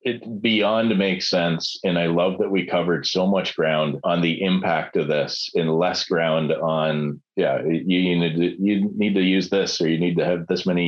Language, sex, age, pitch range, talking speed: English, male, 40-59, 85-95 Hz, 215 wpm